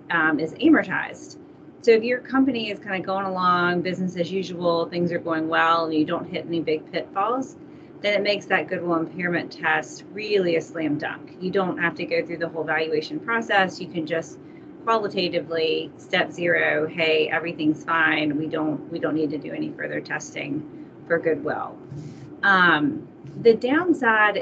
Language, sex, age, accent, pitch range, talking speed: English, female, 30-49, American, 160-195 Hz, 175 wpm